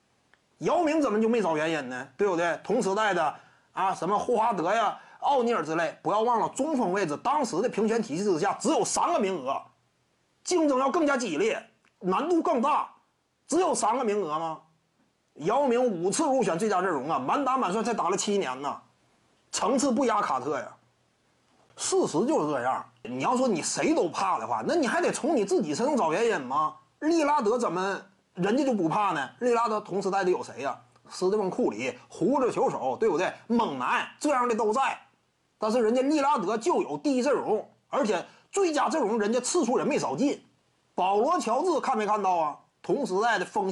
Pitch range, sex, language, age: 205-290 Hz, male, Chinese, 30-49